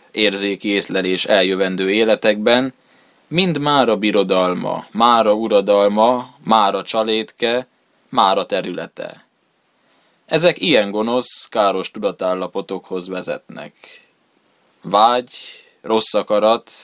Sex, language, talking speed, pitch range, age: male, Hungarian, 80 wpm, 100-115 Hz, 20-39